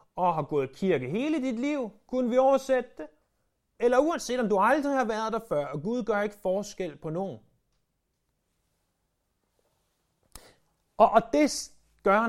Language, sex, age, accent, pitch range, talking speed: Danish, male, 30-49, native, 150-225 Hz, 150 wpm